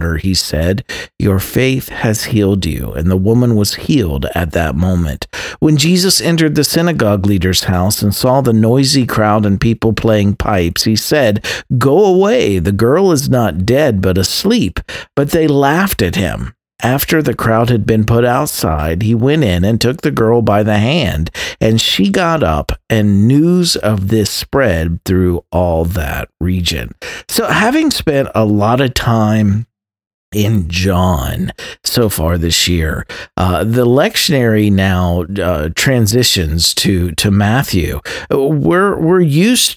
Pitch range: 90-130 Hz